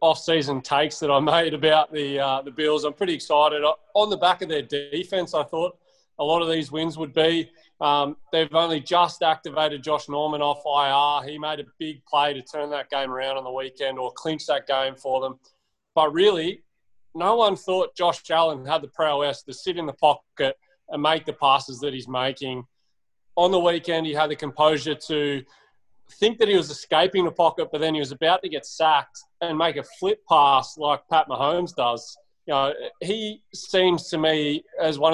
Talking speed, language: 205 wpm, English